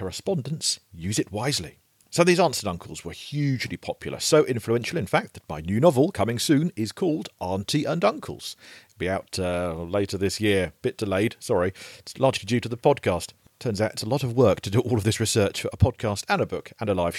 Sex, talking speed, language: male, 225 wpm, English